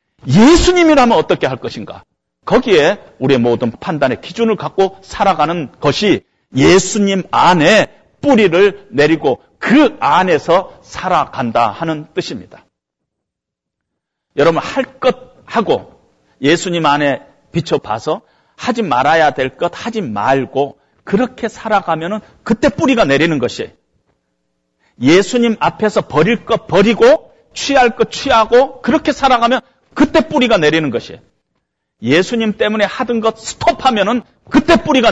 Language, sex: Korean, male